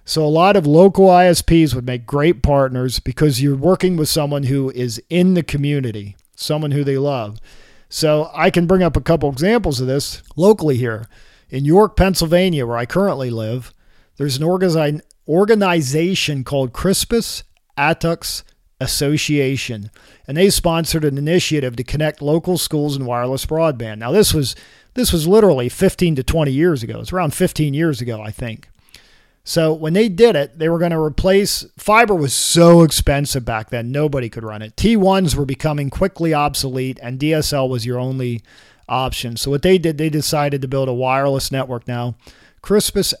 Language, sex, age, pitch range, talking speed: English, male, 50-69, 130-165 Hz, 170 wpm